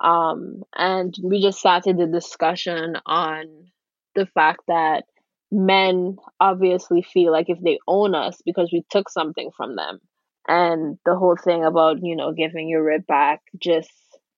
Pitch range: 160-185 Hz